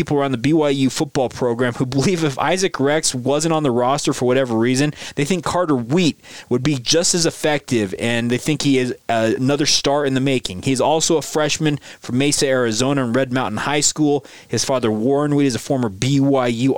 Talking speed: 205 wpm